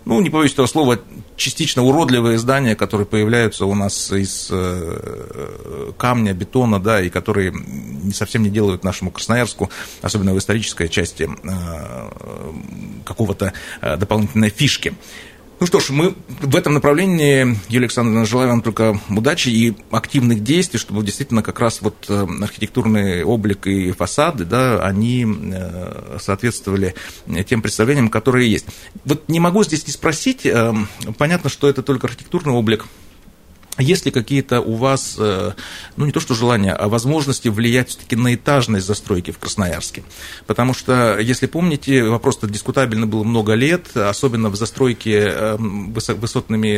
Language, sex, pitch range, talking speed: Russian, male, 105-130 Hz, 135 wpm